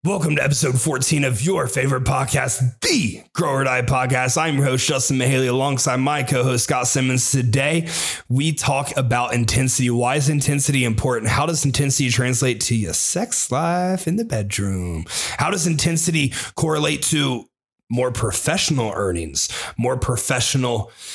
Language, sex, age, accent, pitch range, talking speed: English, male, 30-49, American, 115-140 Hz, 150 wpm